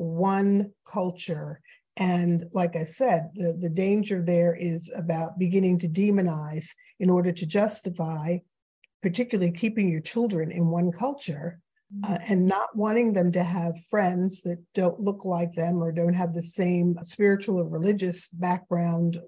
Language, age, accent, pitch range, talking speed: English, 50-69, American, 175-210 Hz, 150 wpm